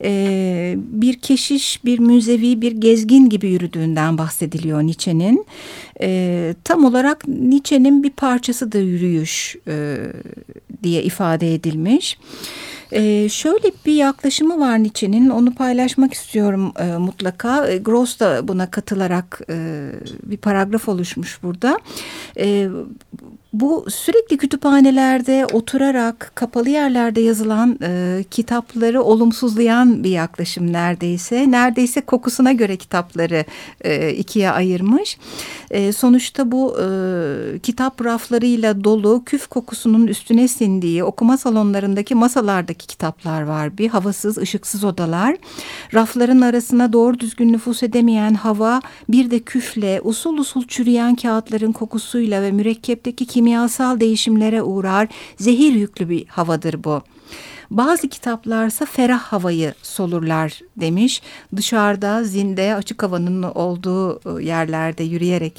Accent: native